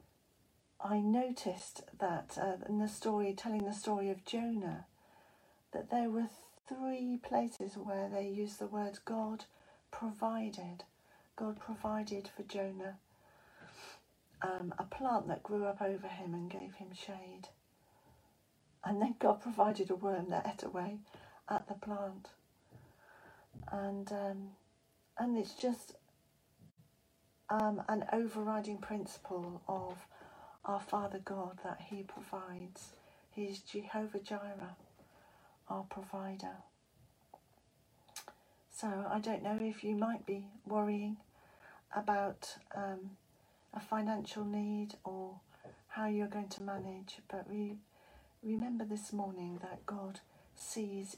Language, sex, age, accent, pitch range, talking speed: English, female, 40-59, British, 195-215 Hz, 120 wpm